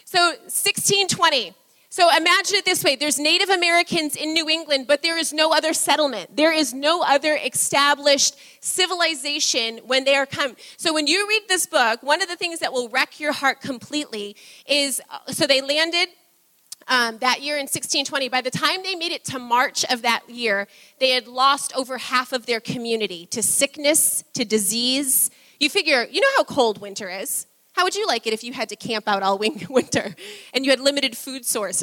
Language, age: English, 30-49